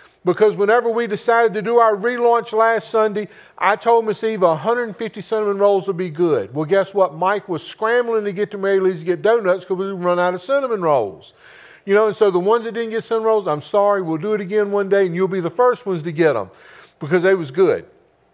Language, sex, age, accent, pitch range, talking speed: English, male, 50-69, American, 190-240 Hz, 240 wpm